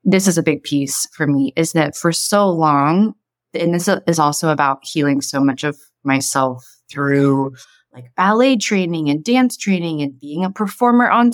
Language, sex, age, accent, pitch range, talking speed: English, female, 20-39, American, 145-195 Hz, 180 wpm